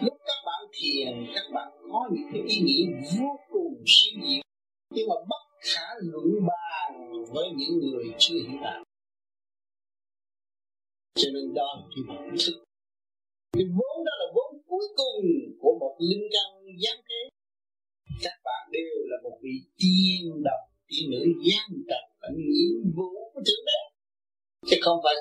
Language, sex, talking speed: Vietnamese, male, 150 wpm